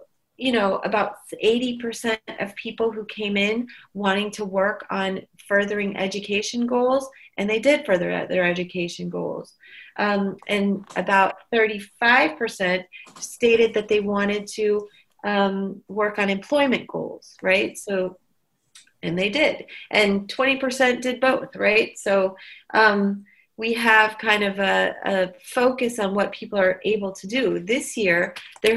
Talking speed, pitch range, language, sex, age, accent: 140 wpm, 195-230 Hz, English, female, 30-49, American